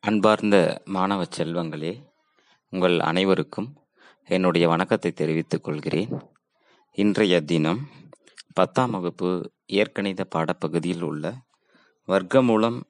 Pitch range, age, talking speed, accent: 90-125 Hz, 30-49, 80 wpm, native